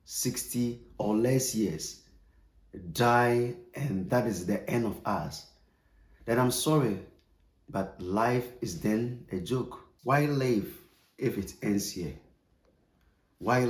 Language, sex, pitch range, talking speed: English, male, 90-120 Hz, 125 wpm